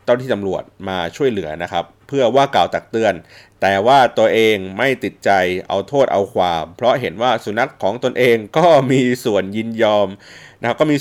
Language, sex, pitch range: Thai, male, 95-125 Hz